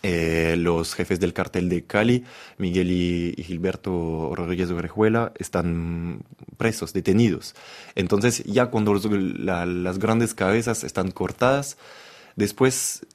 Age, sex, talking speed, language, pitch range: 20-39, male, 115 wpm, Spanish, 90-115 Hz